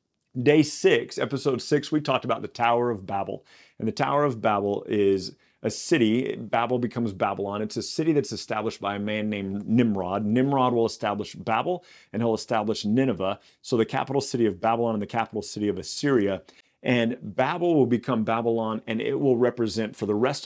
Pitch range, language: 100-130 Hz, English